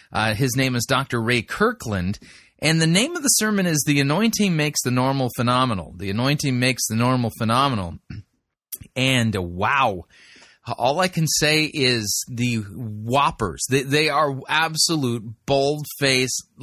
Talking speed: 150 wpm